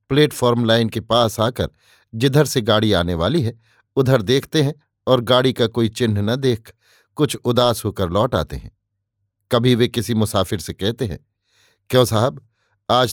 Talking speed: 170 wpm